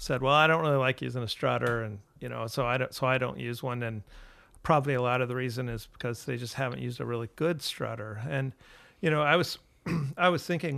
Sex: male